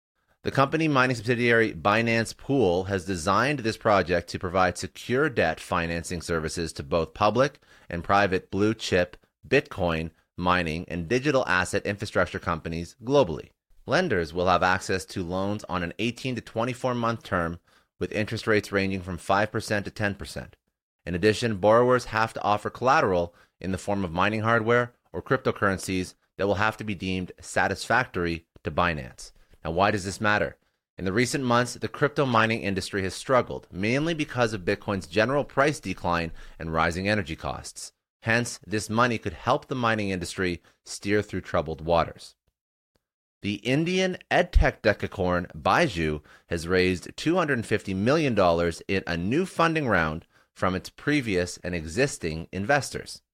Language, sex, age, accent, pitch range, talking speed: English, male, 30-49, American, 90-115 Hz, 150 wpm